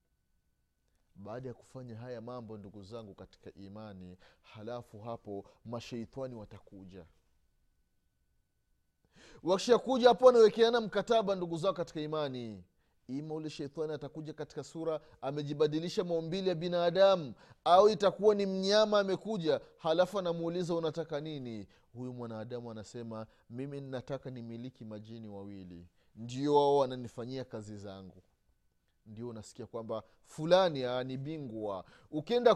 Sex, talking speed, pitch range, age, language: male, 105 wpm, 105-160 Hz, 30-49, Swahili